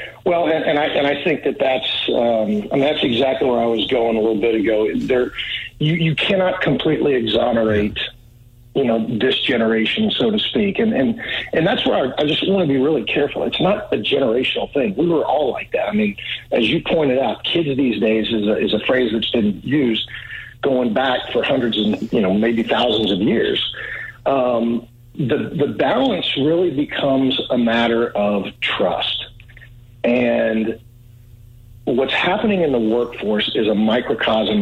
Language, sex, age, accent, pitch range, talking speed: English, male, 50-69, American, 110-135 Hz, 180 wpm